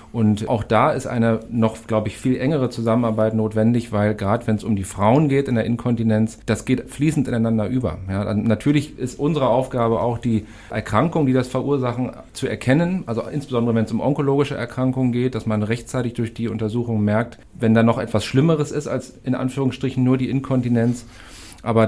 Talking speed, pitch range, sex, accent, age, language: 190 wpm, 110-130 Hz, male, German, 40-59, German